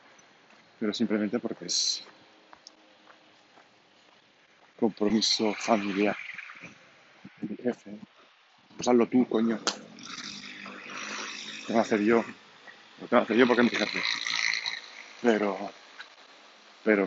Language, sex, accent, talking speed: Spanish, male, Spanish, 95 wpm